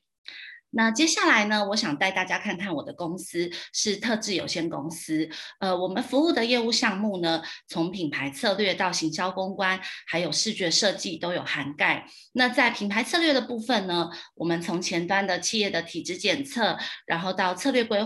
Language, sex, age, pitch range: Chinese, female, 30-49, 170-230 Hz